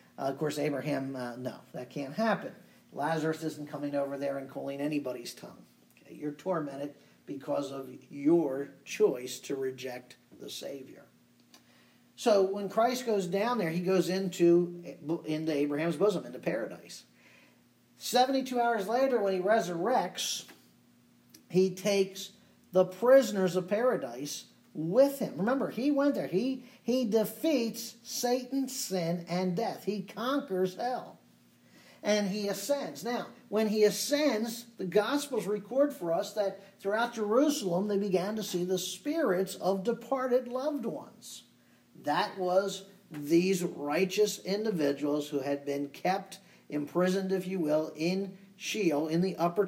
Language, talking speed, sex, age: English, 135 wpm, male, 50-69